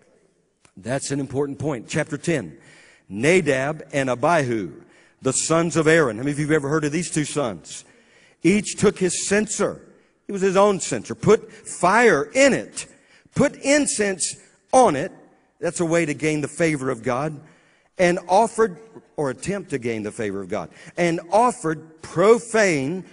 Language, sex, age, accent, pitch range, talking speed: English, male, 50-69, American, 145-195 Hz, 160 wpm